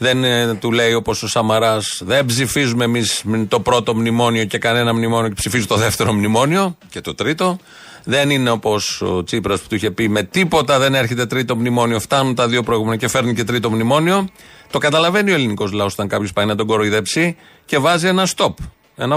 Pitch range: 105-135 Hz